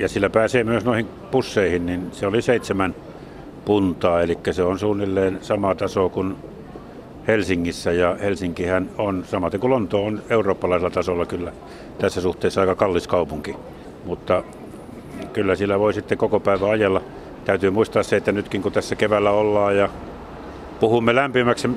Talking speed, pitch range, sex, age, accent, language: 150 wpm, 95-115 Hz, male, 60-79, native, Finnish